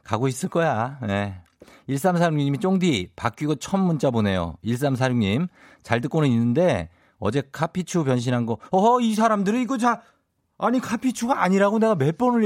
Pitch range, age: 105-175 Hz, 50-69